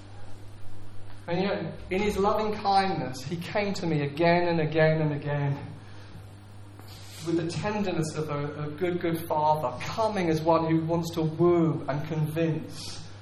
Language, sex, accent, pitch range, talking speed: English, male, British, 135-180 Hz, 150 wpm